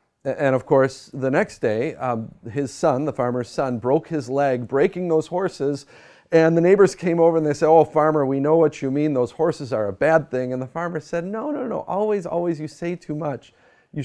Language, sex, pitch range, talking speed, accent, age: English, male, 125-160 Hz, 225 wpm, American, 40-59